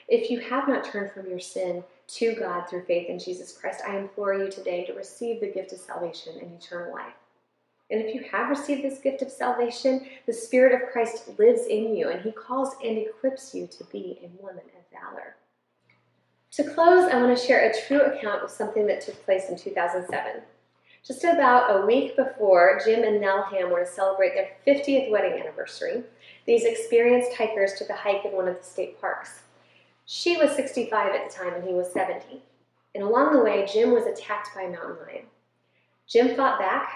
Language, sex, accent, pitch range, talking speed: English, female, American, 190-265 Hz, 200 wpm